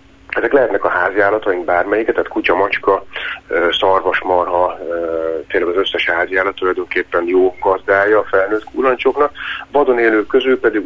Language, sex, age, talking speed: Hungarian, male, 30-49, 115 wpm